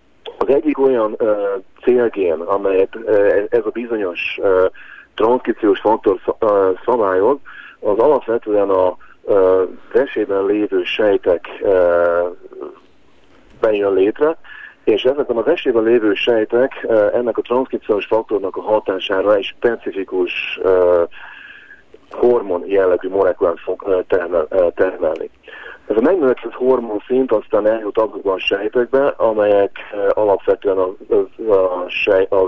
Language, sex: Hungarian, male